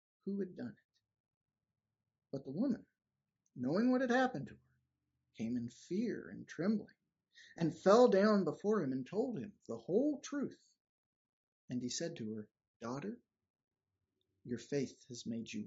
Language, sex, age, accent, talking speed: English, male, 50-69, American, 155 wpm